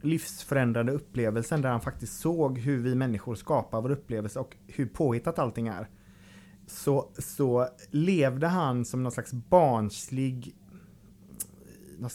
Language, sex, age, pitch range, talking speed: Swedish, male, 30-49, 115-155 Hz, 130 wpm